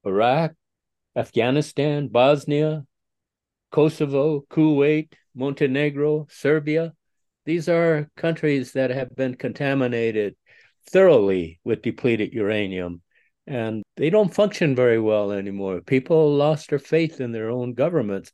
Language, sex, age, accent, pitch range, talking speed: English, male, 60-79, American, 120-150 Hz, 110 wpm